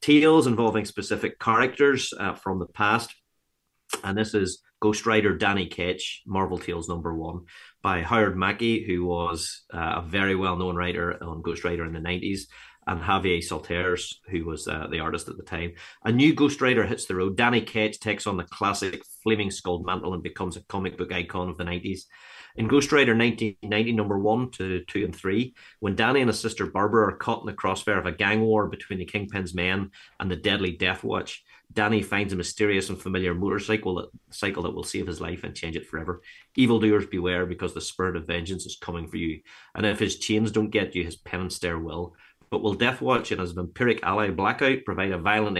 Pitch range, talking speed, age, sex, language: 90-110 Hz, 210 wpm, 30-49, male, English